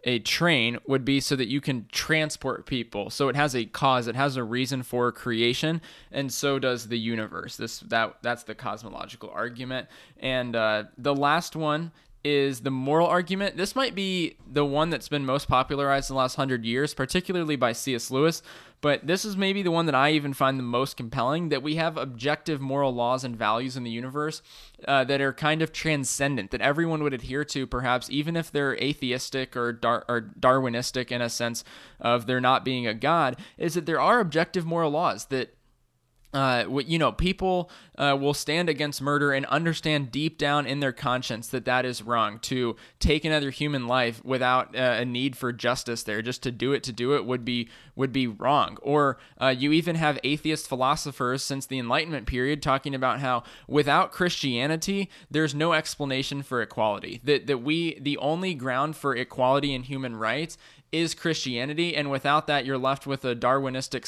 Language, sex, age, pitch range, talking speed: English, male, 20-39, 125-150 Hz, 195 wpm